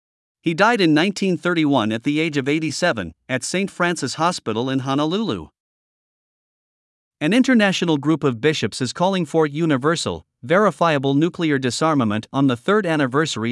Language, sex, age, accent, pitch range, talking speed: English, male, 50-69, American, 130-160 Hz, 140 wpm